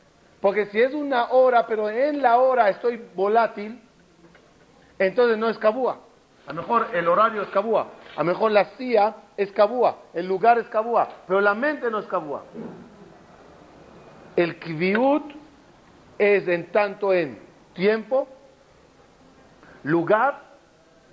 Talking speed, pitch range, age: 135 wpm, 185-235 Hz, 40-59